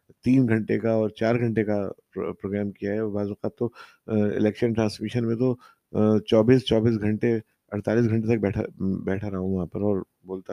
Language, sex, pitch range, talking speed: Urdu, male, 105-130 Hz, 175 wpm